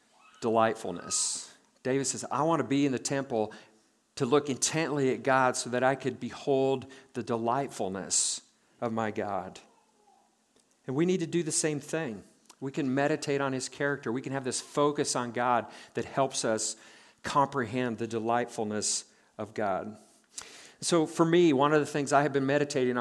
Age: 50-69